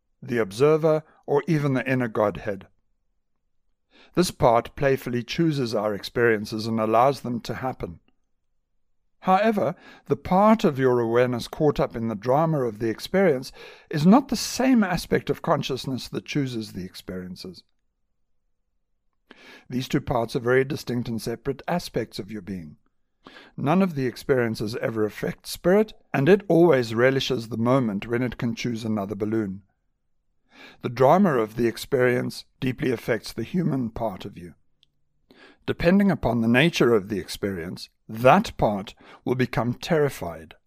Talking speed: 145 wpm